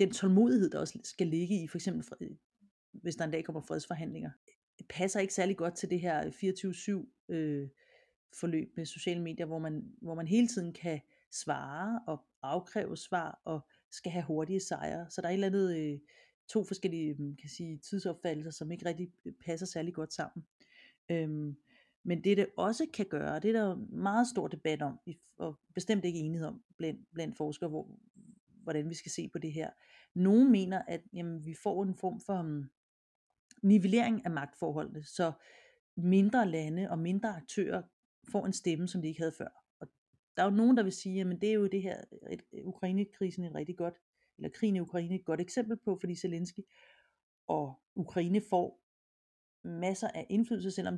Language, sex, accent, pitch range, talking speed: Danish, female, native, 165-200 Hz, 190 wpm